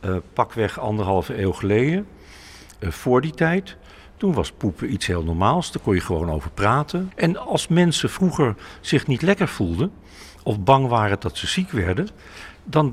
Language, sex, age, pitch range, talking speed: Dutch, male, 50-69, 90-140 Hz, 170 wpm